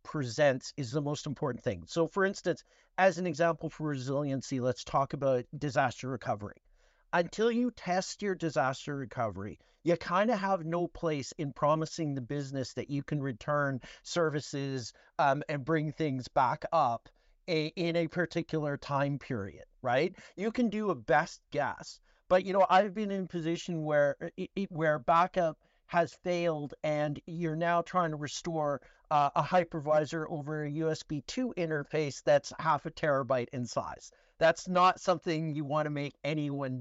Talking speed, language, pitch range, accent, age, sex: 160 wpm, English, 135-170 Hz, American, 50-69, male